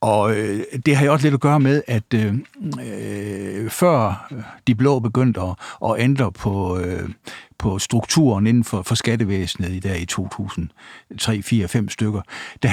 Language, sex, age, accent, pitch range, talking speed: Danish, male, 60-79, native, 105-135 Hz, 140 wpm